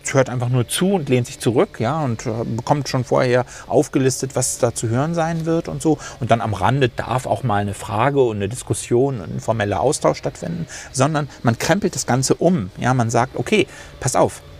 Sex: male